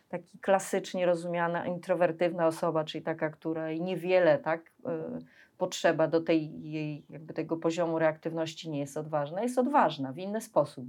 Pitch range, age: 155-190 Hz, 30-49